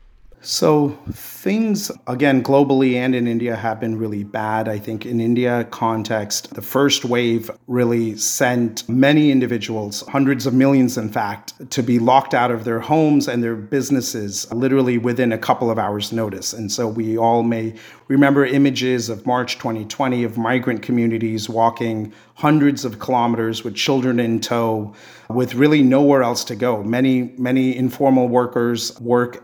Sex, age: male, 40-59